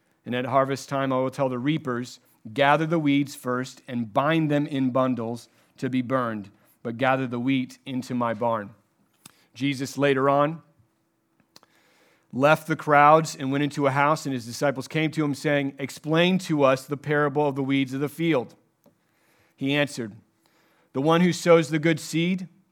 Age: 40-59